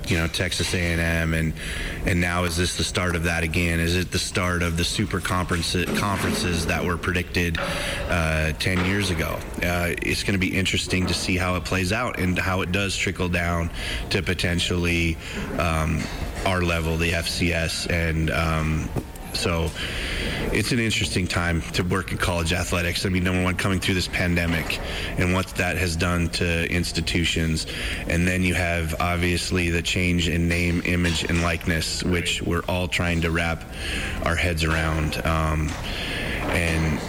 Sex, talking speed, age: male, 170 wpm, 30-49